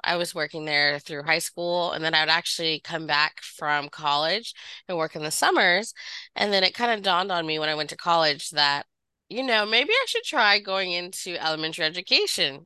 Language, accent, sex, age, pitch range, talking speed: English, American, female, 20-39, 155-190 Hz, 215 wpm